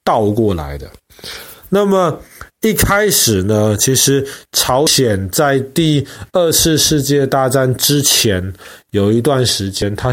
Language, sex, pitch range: Chinese, male, 105-150 Hz